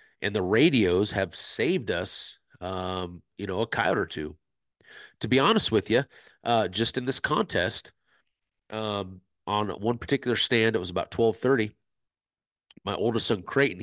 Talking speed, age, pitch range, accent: 160 wpm, 40-59, 90-110 Hz, American